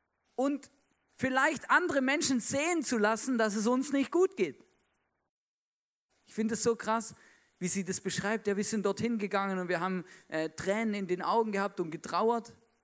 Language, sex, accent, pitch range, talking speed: German, male, German, 140-220 Hz, 175 wpm